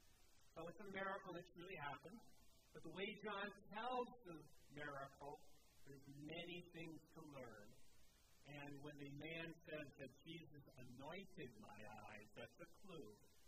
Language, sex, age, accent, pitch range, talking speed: English, male, 50-69, American, 130-175 Hz, 140 wpm